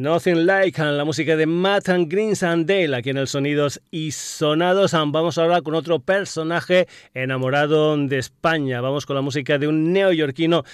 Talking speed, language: 185 wpm, Spanish